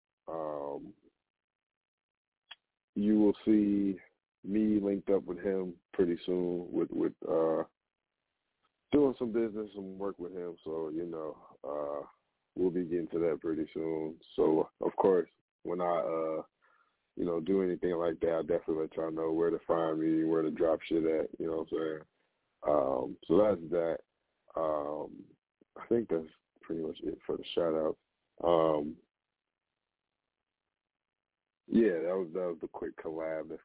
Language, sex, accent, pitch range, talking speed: English, male, American, 80-105 Hz, 155 wpm